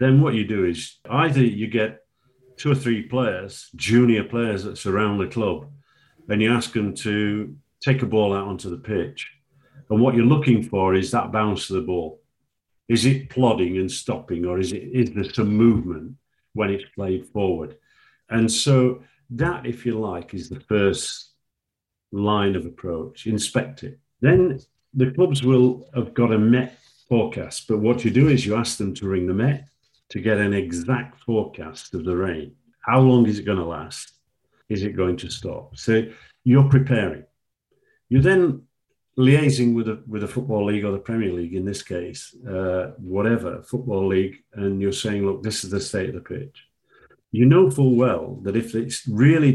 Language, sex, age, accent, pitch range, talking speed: English, male, 50-69, British, 100-130 Hz, 185 wpm